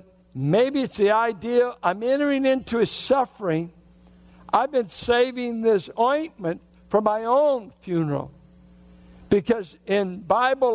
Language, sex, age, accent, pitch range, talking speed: English, male, 60-79, American, 145-225 Hz, 115 wpm